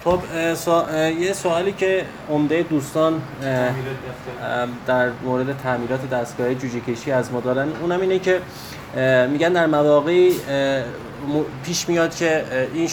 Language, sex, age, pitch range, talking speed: Persian, male, 20-39, 120-145 Hz, 115 wpm